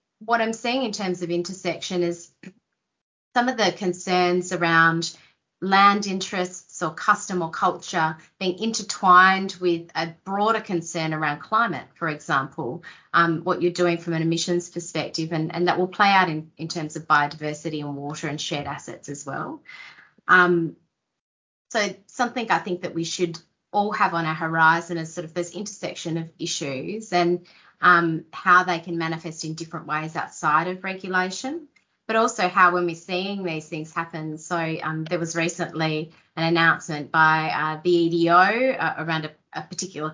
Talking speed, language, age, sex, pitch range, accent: 165 wpm, English, 30-49, female, 160-180 Hz, Australian